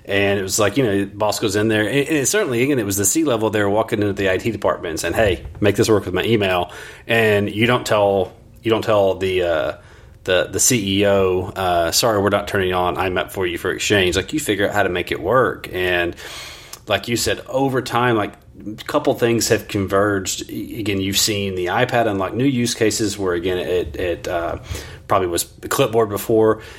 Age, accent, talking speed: 30-49, American, 215 wpm